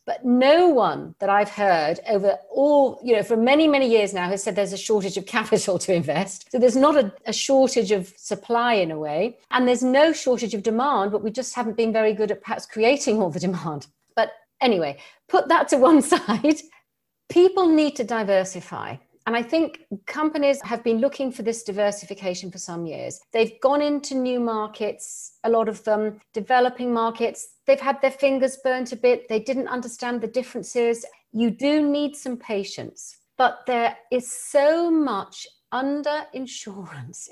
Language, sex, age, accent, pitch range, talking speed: English, female, 40-59, British, 195-265 Hz, 180 wpm